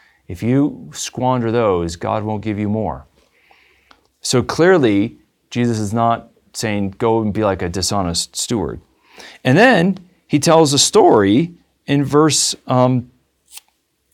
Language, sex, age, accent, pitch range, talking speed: English, male, 40-59, American, 105-135 Hz, 130 wpm